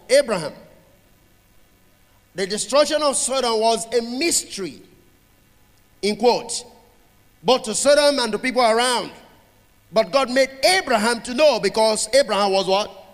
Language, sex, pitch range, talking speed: English, male, 195-250 Hz, 125 wpm